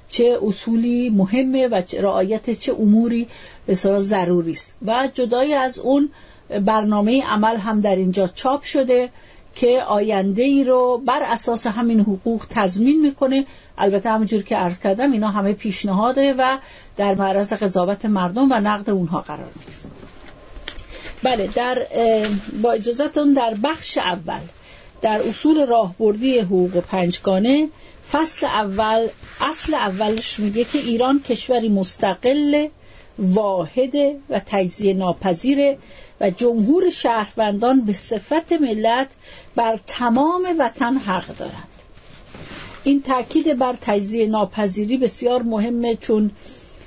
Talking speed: 120 wpm